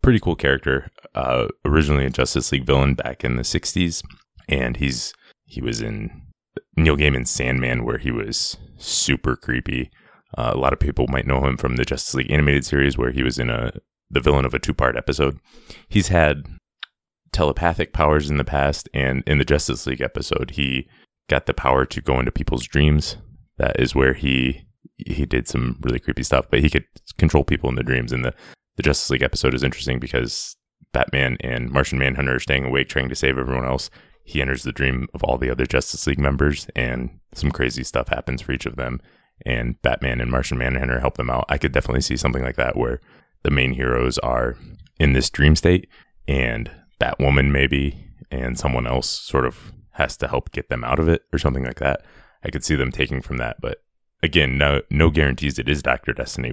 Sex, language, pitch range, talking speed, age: male, English, 65-75 Hz, 205 wpm, 20-39